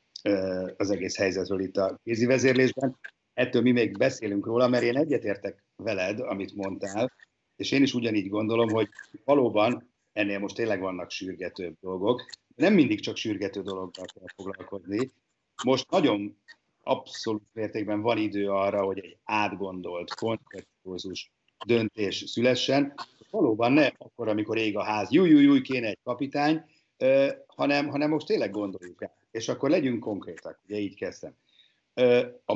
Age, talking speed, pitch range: 50-69, 145 wpm, 100-125 Hz